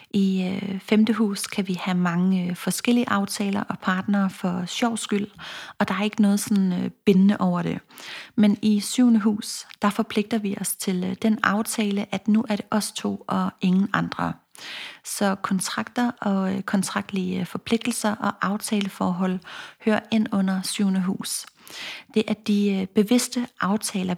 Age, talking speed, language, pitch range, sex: 30-49, 150 wpm, Danish, 185-215 Hz, female